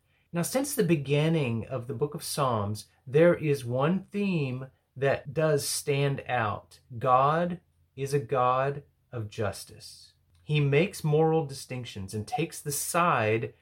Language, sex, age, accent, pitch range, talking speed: English, male, 30-49, American, 110-145 Hz, 135 wpm